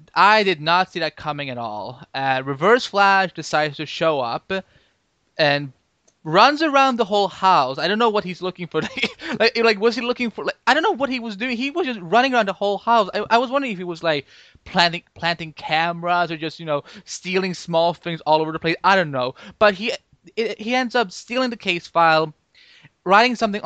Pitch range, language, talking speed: 140-190 Hz, English, 220 wpm